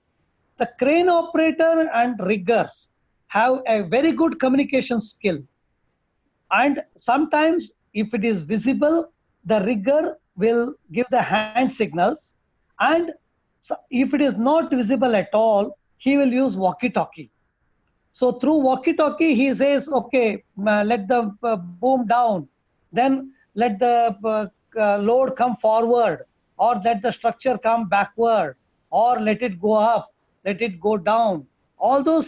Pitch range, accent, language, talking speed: 210-270 Hz, Indian, English, 130 wpm